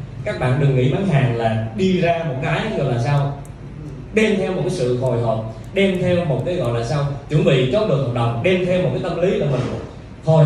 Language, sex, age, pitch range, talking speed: Vietnamese, male, 20-39, 125-165 Hz, 245 wpm